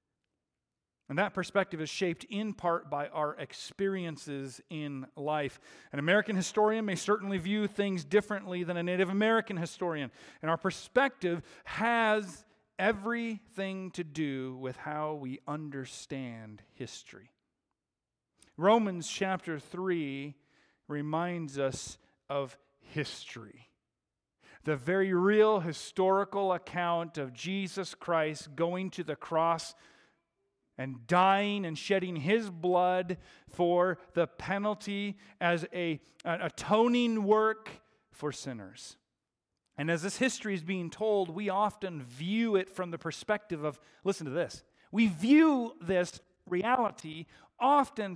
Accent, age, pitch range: American, 40-59, 155-205 Hz